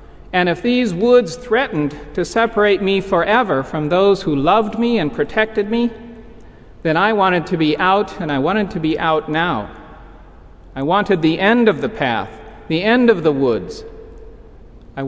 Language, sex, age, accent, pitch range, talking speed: English, male, 50-69, American, 135-175 Hz, 170 wpm